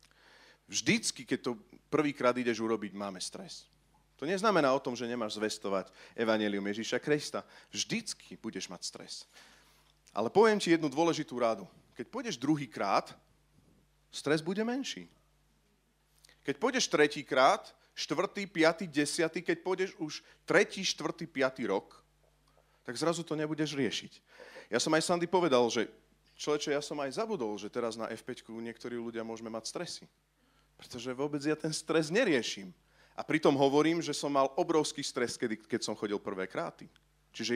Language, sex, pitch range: Slovak, male, 120-170 Hz